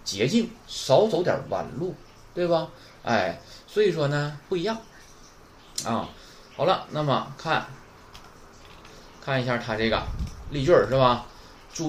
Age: 20-39